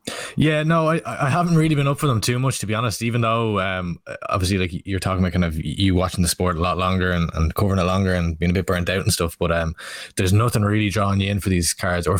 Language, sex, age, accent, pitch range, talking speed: English, male, 20-39, Irish, 90-105 Hz, 280 wpm